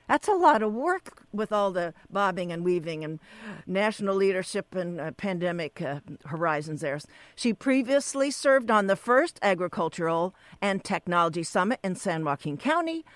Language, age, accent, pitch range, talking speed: English, 60-79, American, 165-215 Hz, 155 wpm